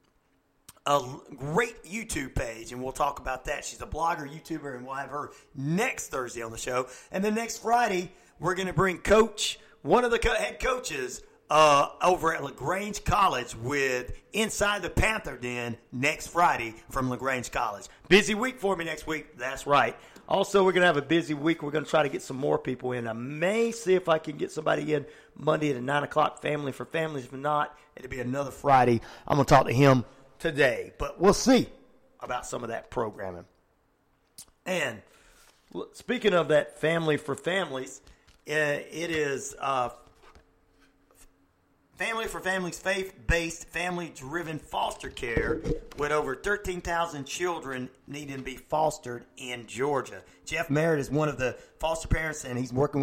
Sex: male